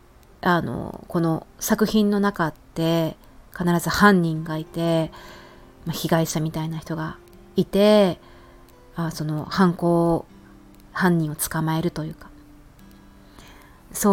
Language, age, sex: Japanese, 30-49, female